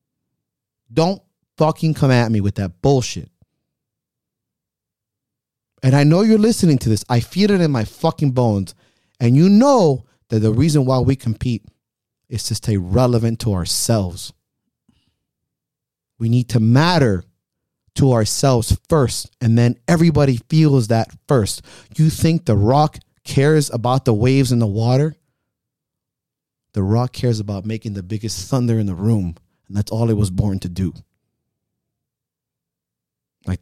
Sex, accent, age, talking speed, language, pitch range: male, American, 30-49, 145 wpm, English, 105-135 Hz